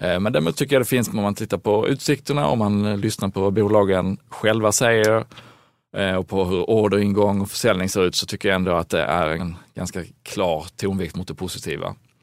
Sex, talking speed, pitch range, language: male, 200 wpm, 90-110 Hz, Swedish